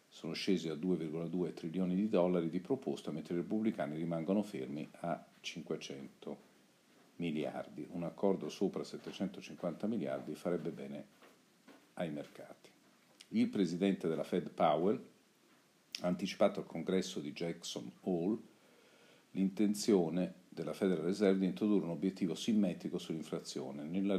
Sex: male